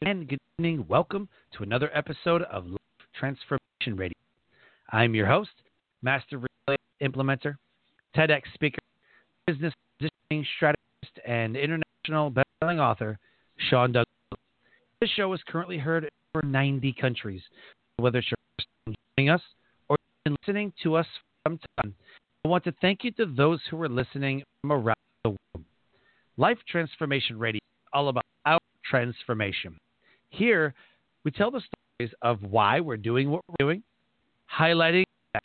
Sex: male